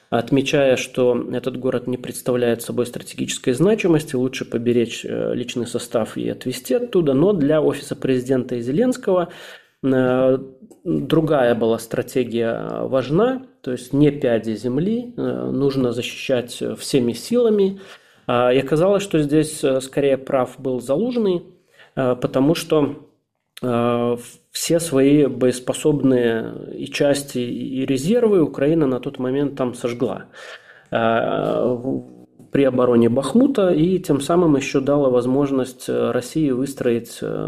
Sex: male